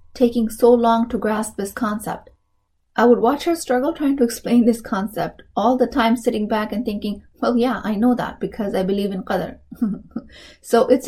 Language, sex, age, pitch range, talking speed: English, female, 20-39, 195-235 Hz, 195 wpm